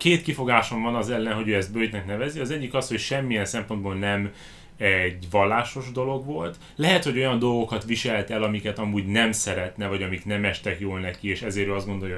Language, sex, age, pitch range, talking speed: Hungarian, male, 30-49, 100-130 Hz, 205 wpm